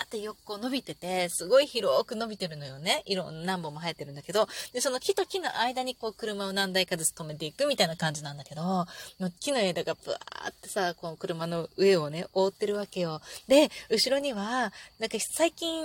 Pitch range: 190-310 Hz